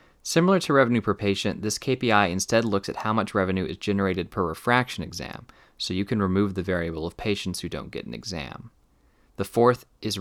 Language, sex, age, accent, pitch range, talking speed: English, male, 20-39, American, 95-115 Hz, 200 wpm